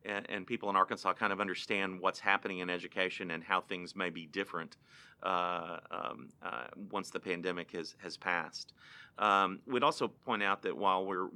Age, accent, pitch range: 40-59, American, 90-105 Hz